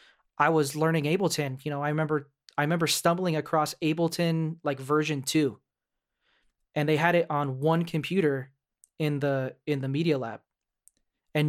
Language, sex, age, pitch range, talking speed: English, male, 20-39, 135-160 Hz, 155 wpm